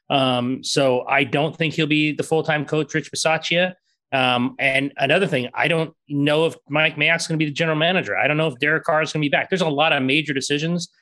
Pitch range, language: 135-155 Hz, English